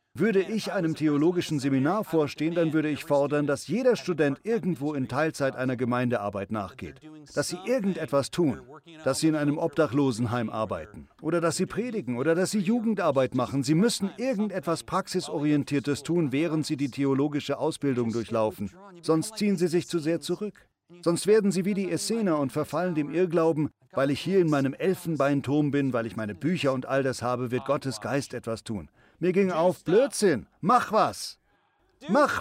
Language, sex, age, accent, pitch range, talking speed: German, male, 40-59, German, 135-180 Hz, 170 wpm